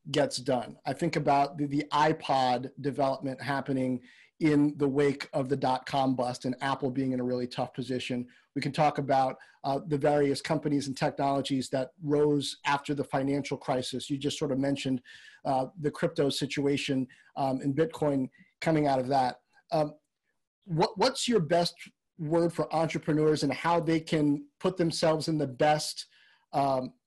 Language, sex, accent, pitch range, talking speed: English, male, American, 140-170 Hz, 165 wpm